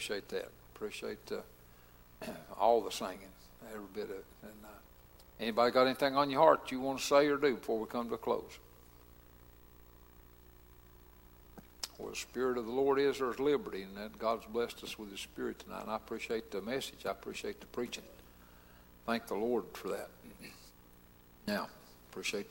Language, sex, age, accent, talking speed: English, male, 60-79, American, 175 wpm